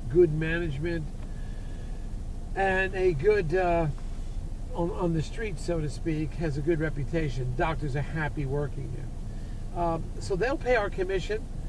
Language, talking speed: English, 145 wpm